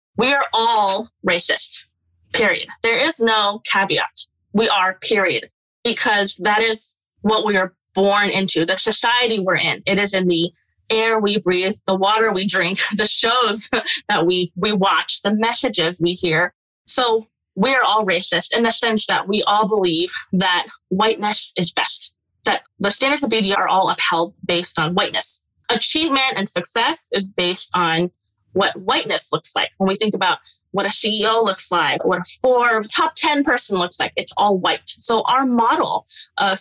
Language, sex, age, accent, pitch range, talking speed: English, female, 20-39, American, 185-240 Hz, 170 wpm